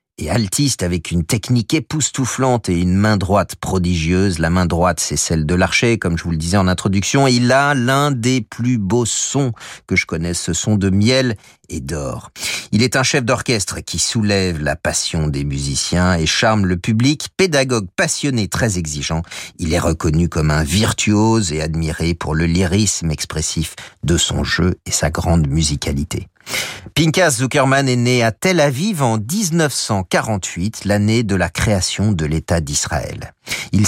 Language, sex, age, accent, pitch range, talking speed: French, male, 50-69, French, 85-125 Hz, 170 wpm